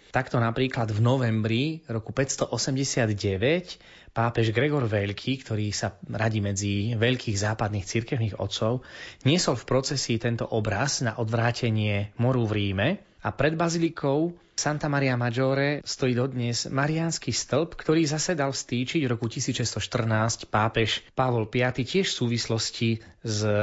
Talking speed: 130 wpm